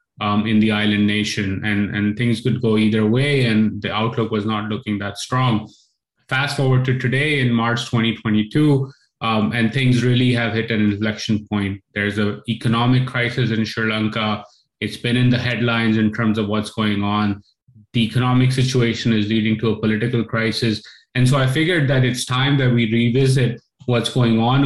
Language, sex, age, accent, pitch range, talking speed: English, male, 20-39, Indian, 110-130 Hz, 185 wpm